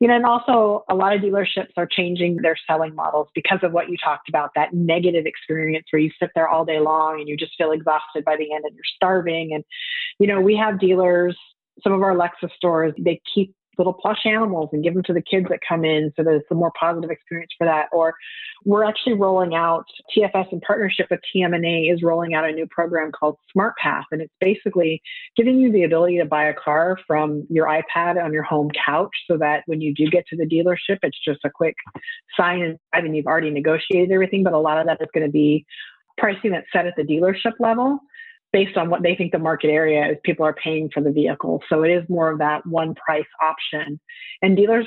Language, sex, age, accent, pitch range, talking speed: English, female, 40-59, American, 155-185 Hz, 230 wpm